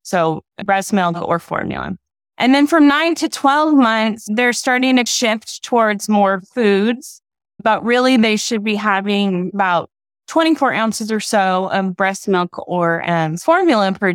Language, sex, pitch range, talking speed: English, female, 180-225 Hz, 155 wpm